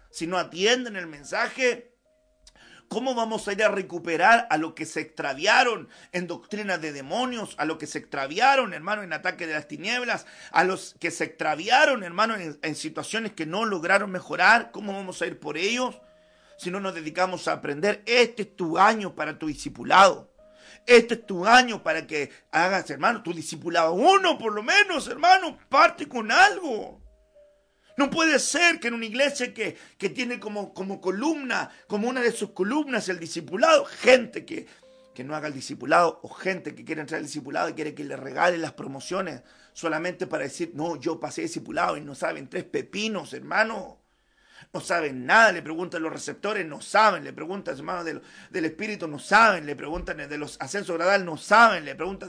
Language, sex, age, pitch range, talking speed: Spanish, male, 40-59, 155-235 Hz, 185 wpm